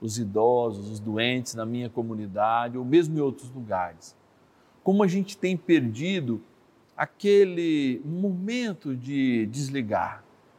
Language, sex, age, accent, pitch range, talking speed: Portuguese, male, 50-69, Brazilian, 120-175 Hz, 120 wpm